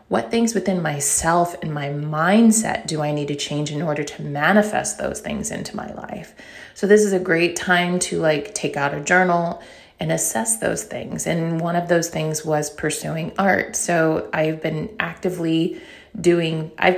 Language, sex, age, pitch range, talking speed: English, female, 30-49, 155-180 Hz, 180 wpm